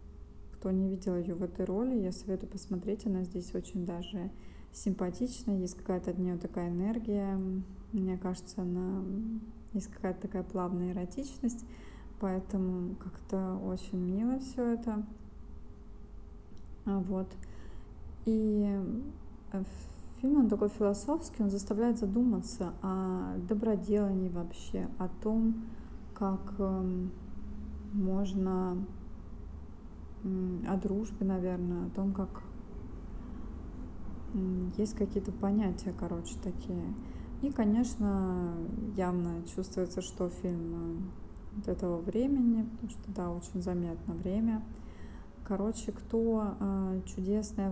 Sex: female